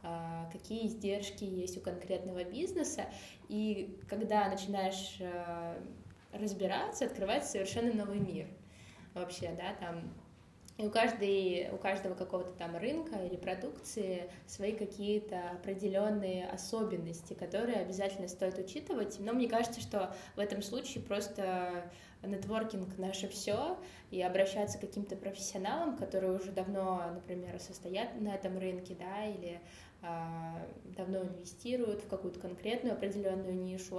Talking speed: 115 wpm